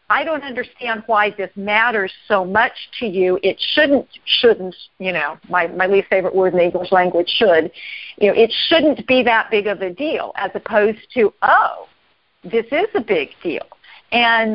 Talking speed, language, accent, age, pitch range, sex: 185 wpm, English, American, 50-69, 185-235 Hz, female